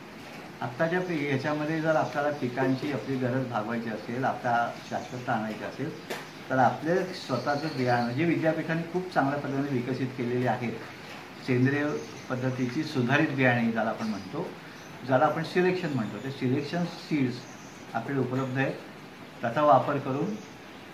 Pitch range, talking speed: 120-150 Hz, 135 wpm